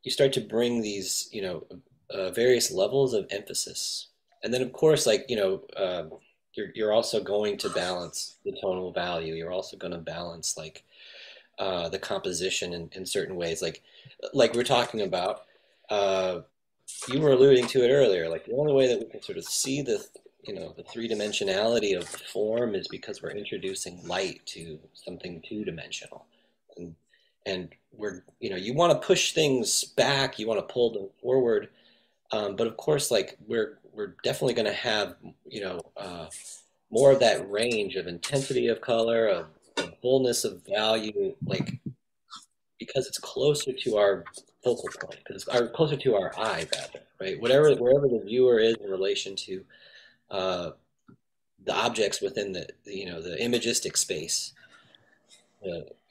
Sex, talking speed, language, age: male, 175 wpm, English, 30-49